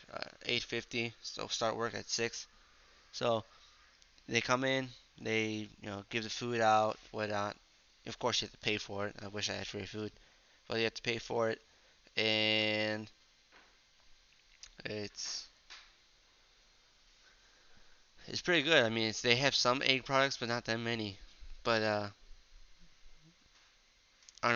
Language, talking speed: English, 150 wpm